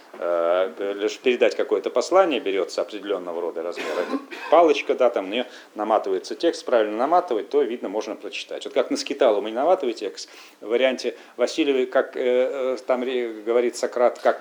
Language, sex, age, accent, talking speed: Russian, male, 40-59, native, 160 wpm